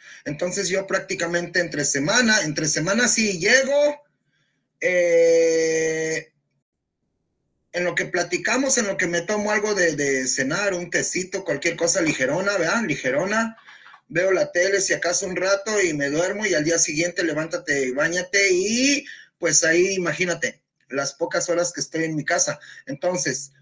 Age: 30-49